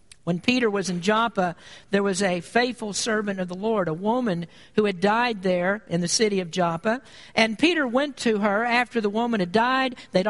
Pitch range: 185-240 Hz